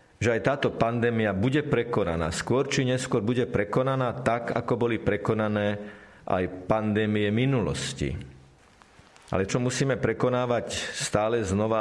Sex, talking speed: male, 120 wpm